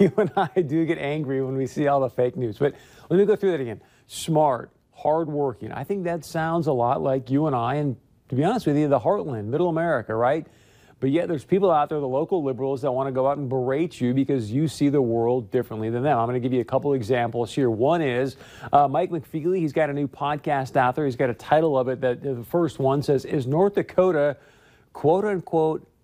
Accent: American